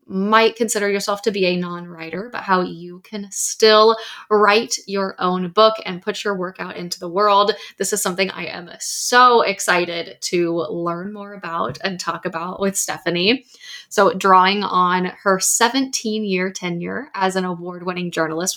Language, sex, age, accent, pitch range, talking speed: English, female, 10-29, American, 175-215 Hz, 160 wpm